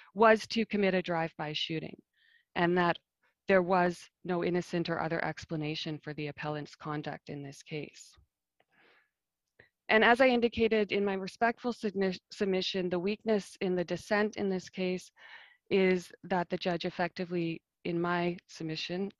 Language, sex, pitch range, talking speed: English, female, 165-200 Hz, 145 wpm